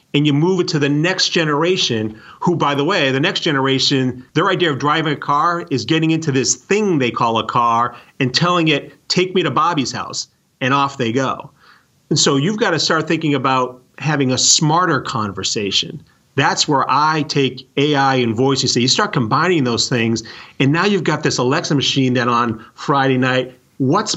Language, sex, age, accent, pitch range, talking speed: English, male, 40-59, American, 130-175 Hz, 195 wpm